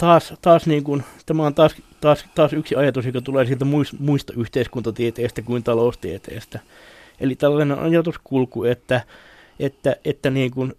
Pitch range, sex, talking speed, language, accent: 120-145 Hz, male, 140 wpm, Finnish, native